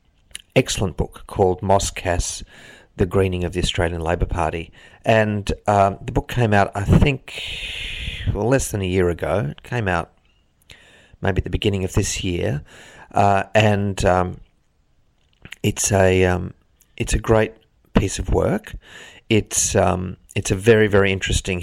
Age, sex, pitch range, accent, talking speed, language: 40-59, male, 90-110 Hz, Australian, 150 wpm, English